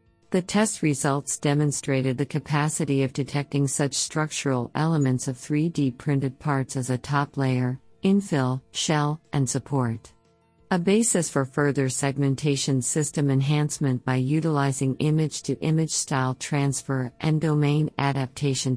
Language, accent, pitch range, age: English, American, 130-150 Hz, 50-69